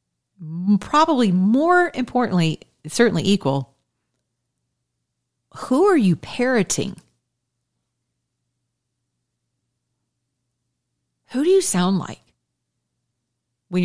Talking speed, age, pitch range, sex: 65 wpm, 40-59, 135-180 Hz, female